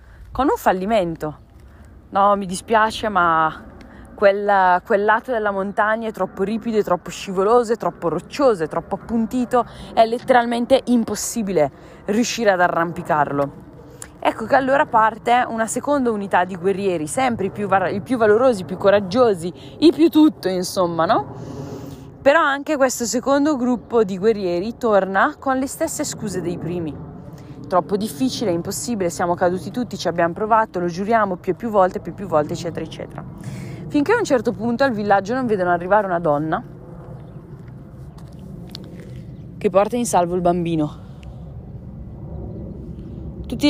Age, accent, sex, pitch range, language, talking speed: 20-39, native, female, 170-225 Hz, Italian, 150 wpm